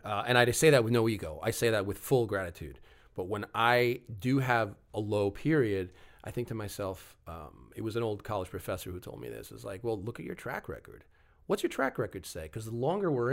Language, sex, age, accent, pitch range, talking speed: English, male, 30-49, American, 100-135 Hz, 250 wpm